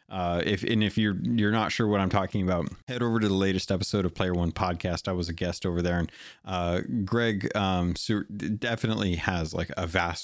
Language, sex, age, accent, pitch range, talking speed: English, male, 30-49, American, 95-120 Hz, 215 wpm